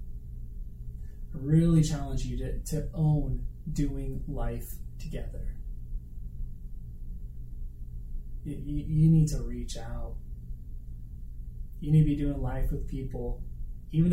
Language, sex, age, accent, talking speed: English, male, 20-39, American, 100 wpm